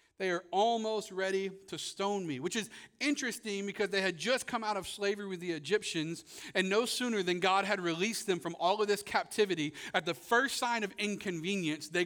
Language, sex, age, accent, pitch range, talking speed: English, male, 40-59, American, 140-195 Hz, 205 wpm